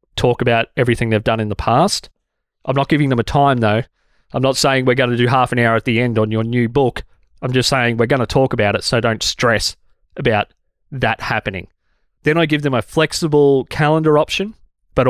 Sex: male